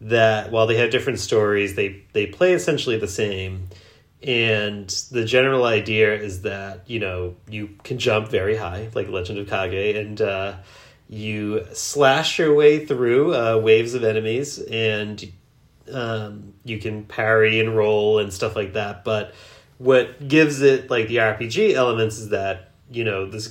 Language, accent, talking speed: English, American, 165 wpm